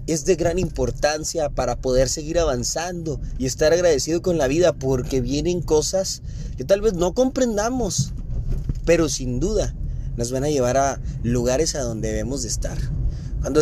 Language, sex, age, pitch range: Spanish, male, 30-49, 130-170 Hz